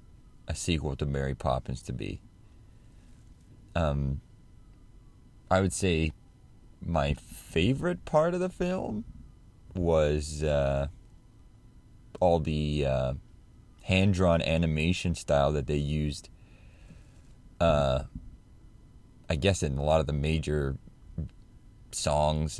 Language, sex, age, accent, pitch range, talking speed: English, male, 30-49, American, 75-110 Hz, 100 wpm